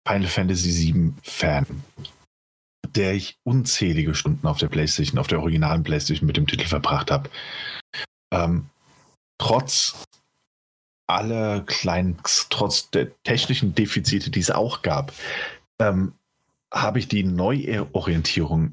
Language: German